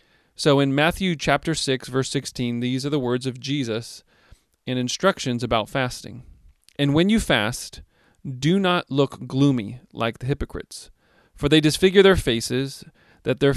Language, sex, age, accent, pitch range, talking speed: English, male, 40-59, American, 115-145 Hz, 155 wpm